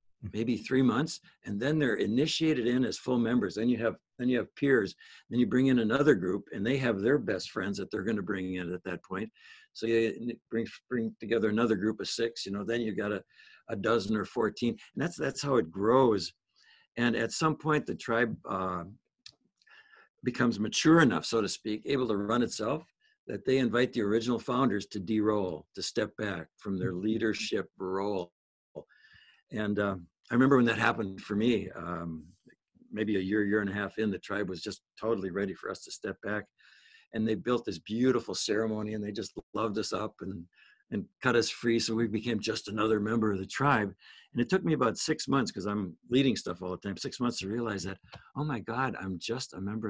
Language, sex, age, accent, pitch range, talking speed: English, male, 60-79, American, 100-125 Hz, 215 wpm